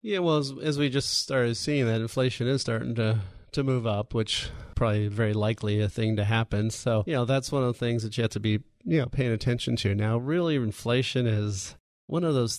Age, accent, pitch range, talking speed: 30-49, American, 105-125 Hz, 235 wpm